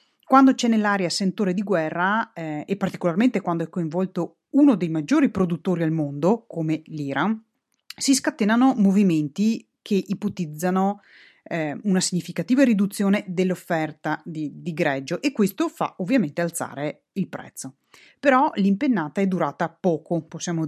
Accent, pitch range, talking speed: native, 165-230 Hz, 135 wpm